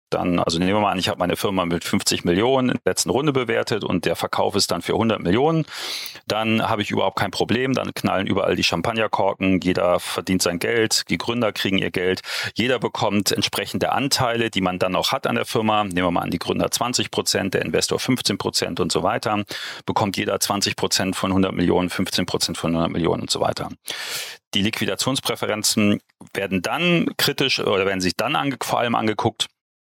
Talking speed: 200 wpm